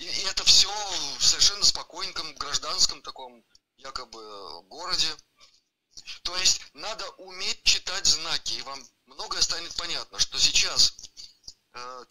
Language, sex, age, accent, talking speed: Russian, male, 30-49, native, 120 wpm